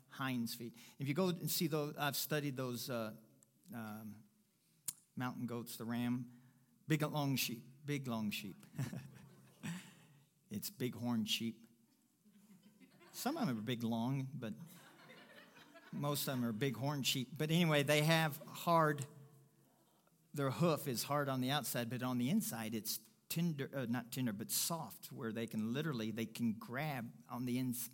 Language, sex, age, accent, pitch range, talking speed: English, male, 50-69, American, 120-165 Hz, 160 wpm